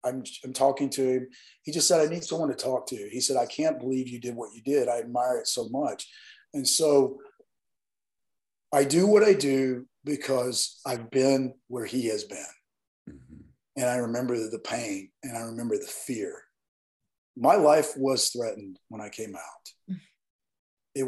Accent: American